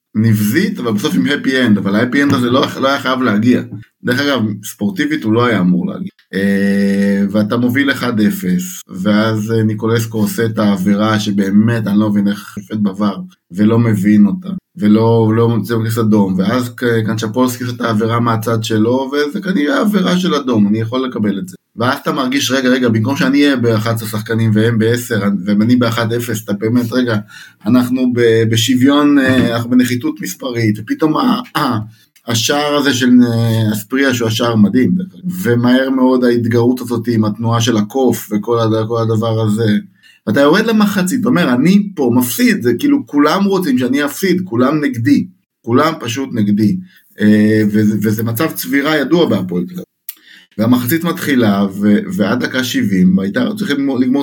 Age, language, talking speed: 20-39, Hebrew, 160 wpm